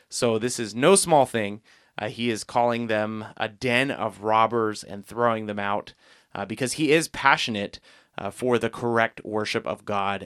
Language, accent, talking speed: English, American, 180 wpm